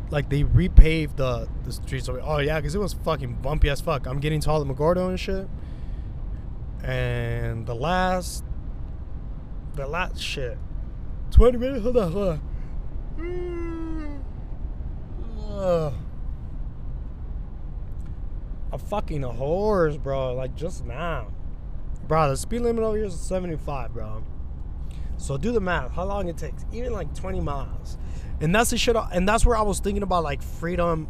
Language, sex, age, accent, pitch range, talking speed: English, male, 20-39, American, 115-175 Hz, 150 wpm